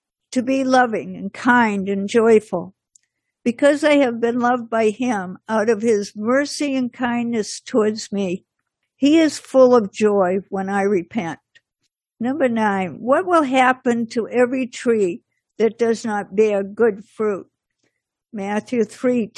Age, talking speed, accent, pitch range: 60-79, 140 wpm, American, 205-240 Hz